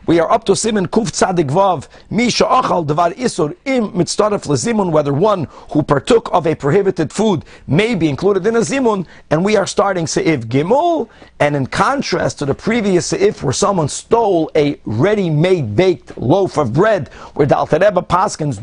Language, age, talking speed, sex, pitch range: English, 50-69, 170 wpm, male, 160-225 Hz